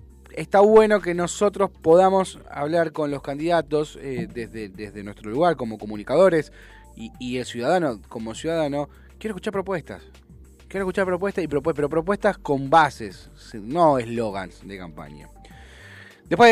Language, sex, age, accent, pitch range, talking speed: Spanish, male, 20-39, Argentinian, 130-175 Hz, 140 wpm